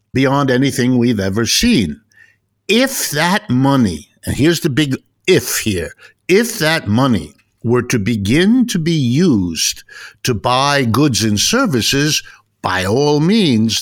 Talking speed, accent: 135 wpm, American